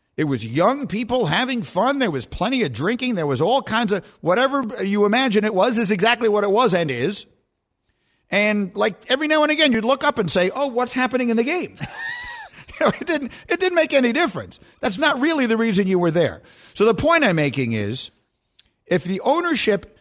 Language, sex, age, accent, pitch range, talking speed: English, male, 50-69, American, 155-240 Hz, 205 wpm